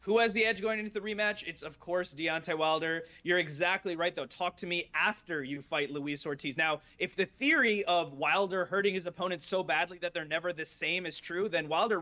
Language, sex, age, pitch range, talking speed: English, male, 30-49, 160-205 Hz, 225 wpm